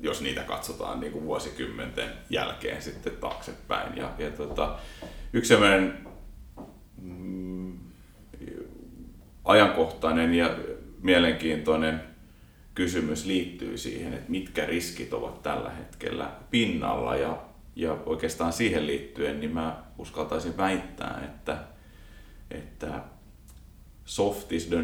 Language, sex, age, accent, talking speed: Finnish, male, 30-49, native, 100 wpm